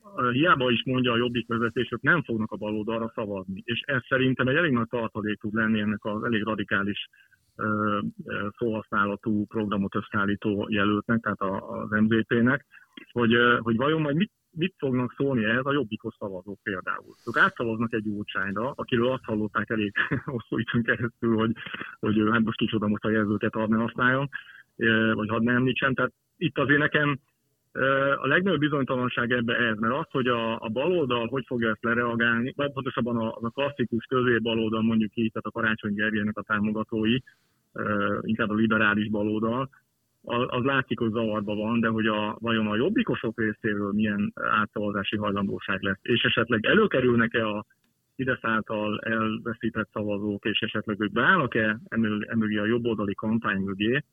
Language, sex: Hungarian, male